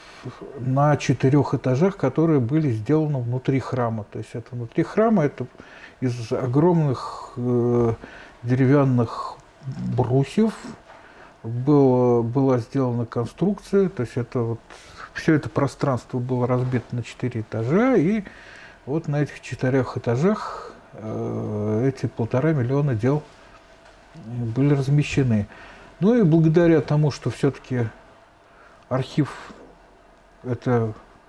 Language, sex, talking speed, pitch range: Russian, male, 105 wpm, 120-155 Hz